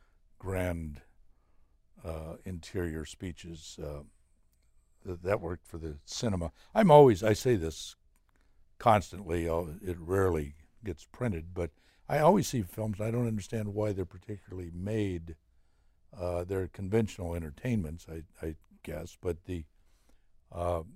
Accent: American